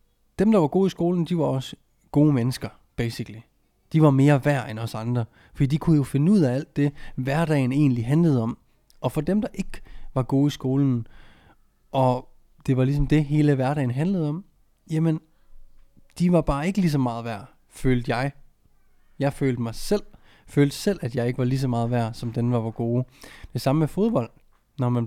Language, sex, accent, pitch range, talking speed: Danish, male, native, 120-145 Hz, 205 wpm